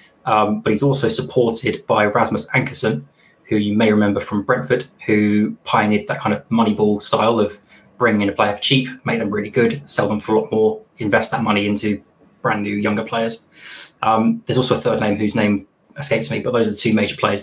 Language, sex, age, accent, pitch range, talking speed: English, male, 20-39, British, 105-115 Hz, 215 wpm